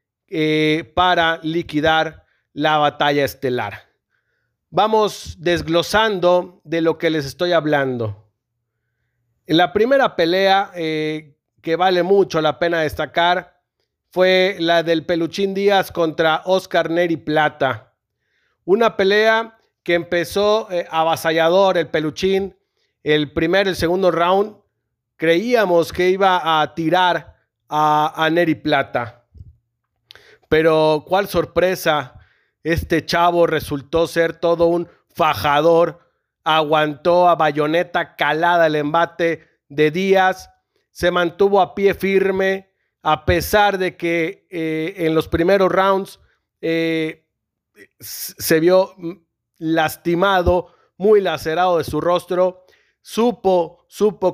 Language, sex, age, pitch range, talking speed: Spanish, male, 40-59, 155-180 Hz, 110 wpm